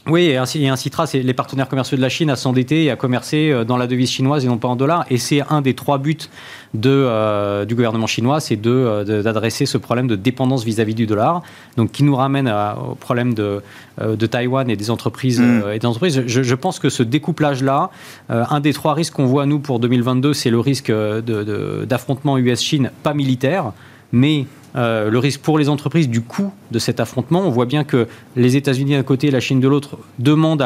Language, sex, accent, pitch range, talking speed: French, male, French, 115-145 Hz, 225 wpm